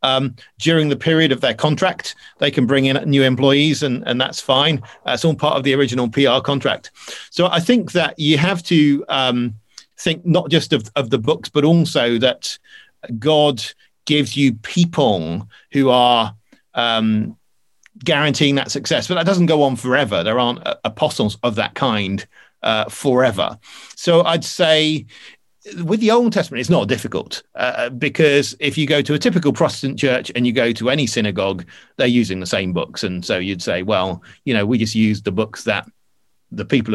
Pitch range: 115-155 Hz